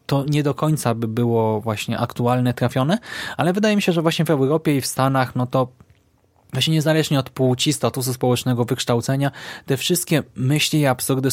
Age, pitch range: 20-39, 120-155 Hz